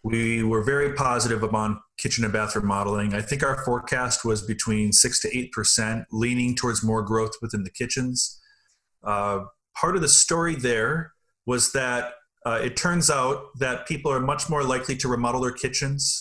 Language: English